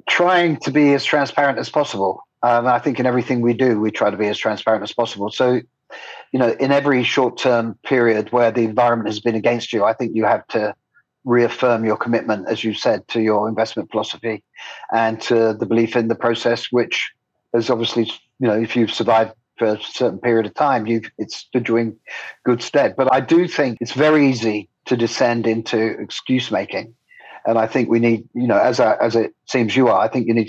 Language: English